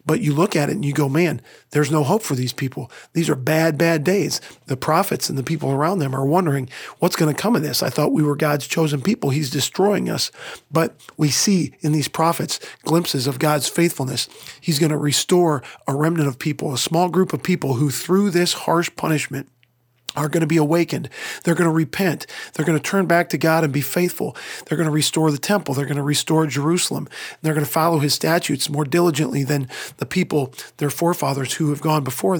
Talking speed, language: 220 wpm, English